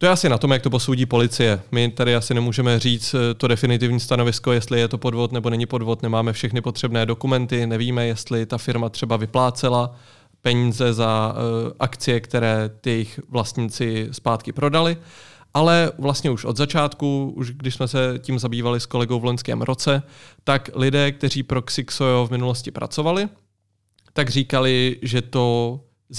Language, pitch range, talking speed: Czech, 120-135 Hz, 165 wpm